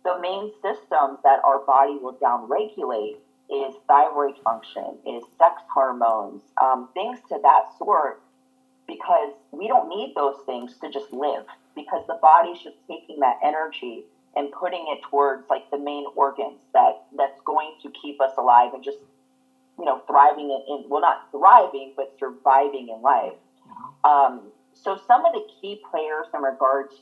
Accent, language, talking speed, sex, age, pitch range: American, English, 160 wpm, female, 40-59, 130-185 Hz